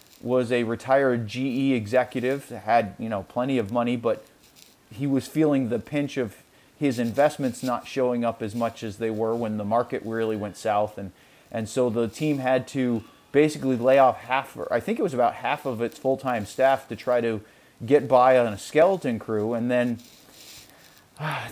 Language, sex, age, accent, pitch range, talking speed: English, male, 30-49, American, 115-135 Hz, 190 wpm